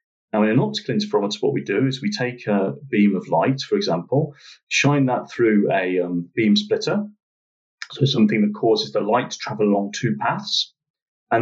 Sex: male